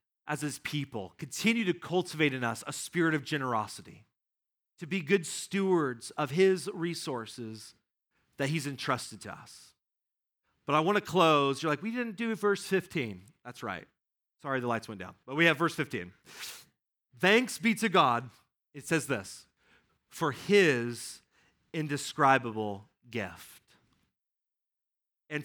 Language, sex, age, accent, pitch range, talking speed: English, male, 40-59, American, 125-170 Hz, 140 wpm